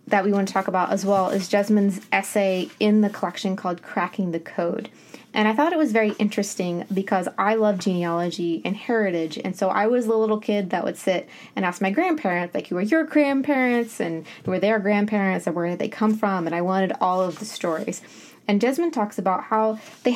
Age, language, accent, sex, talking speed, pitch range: 20-39, English, American, female, 220 wpm, 180-225 Hz